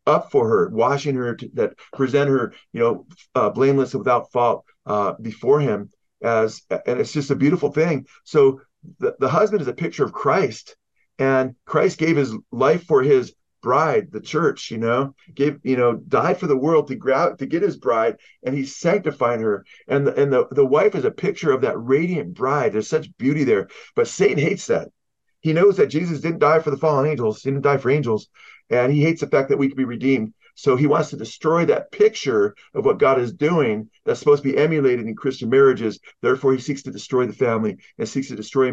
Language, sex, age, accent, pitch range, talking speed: English, male, 40-59, American, 130-165 Hz, 220 wpm